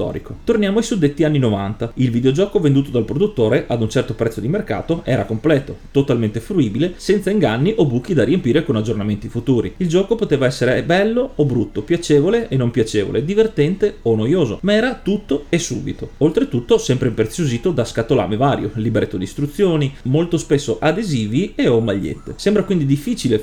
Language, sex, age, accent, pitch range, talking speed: Italian, male, 30-49, native, 115-155 Hz, 170 wpm